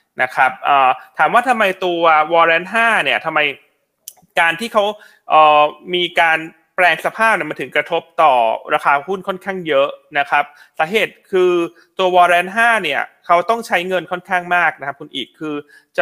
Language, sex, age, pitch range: Thai, male, 20-39, 150-205 Hz